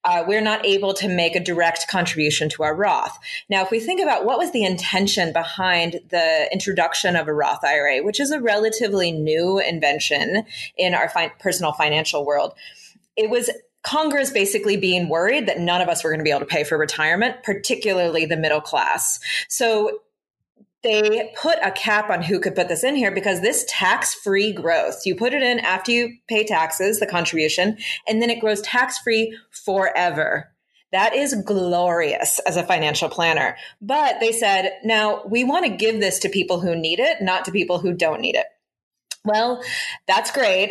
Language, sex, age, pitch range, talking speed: English, female, 20-39, 170-225 Hz, 185 wpm